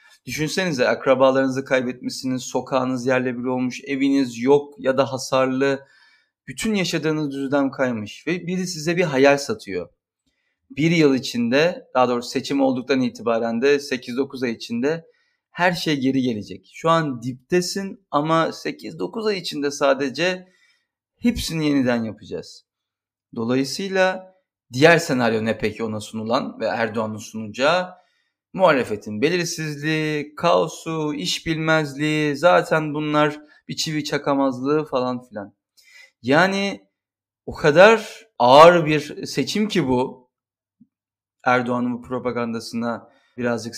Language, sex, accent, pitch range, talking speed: Turkish, male, native, 125-170 Hz, 115 wpm